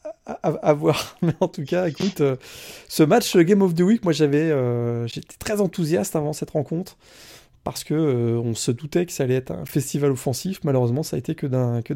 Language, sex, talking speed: French, male, 210 wpm